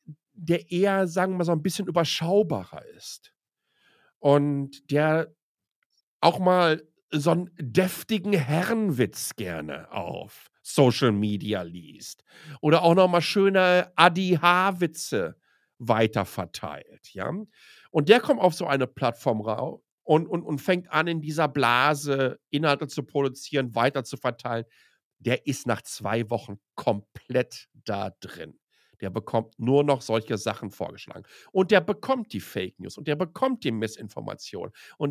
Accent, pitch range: German, 130-180 Hz